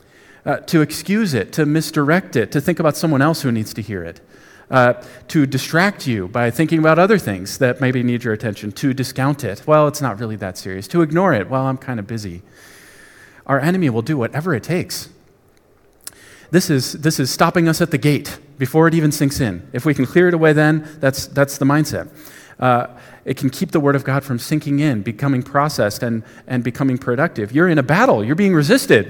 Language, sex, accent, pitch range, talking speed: English, male, American, 125-170 Hz, 215 wpm